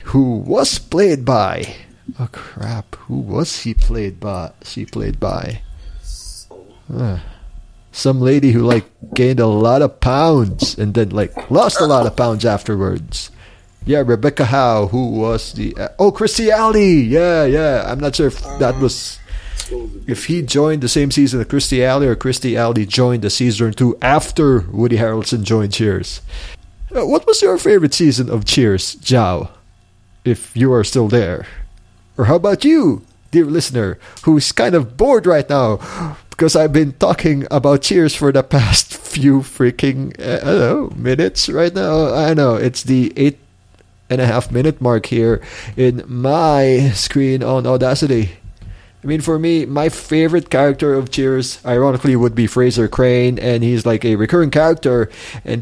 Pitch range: 110-140 Hz